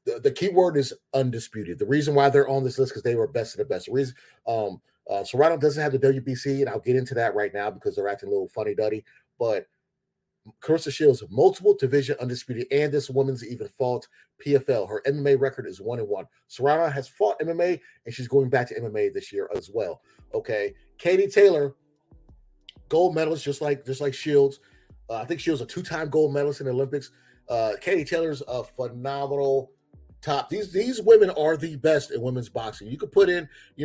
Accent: American